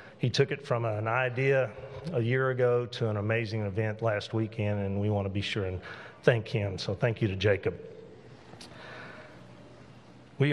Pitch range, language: 110-125 Hz, English